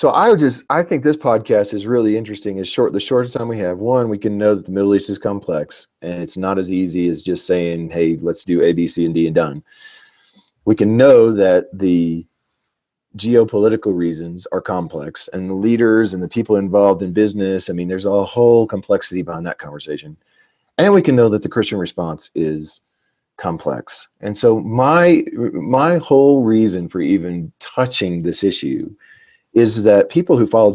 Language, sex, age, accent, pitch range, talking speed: English, male, 40-59, American, 95-140 Hz, 190 wpm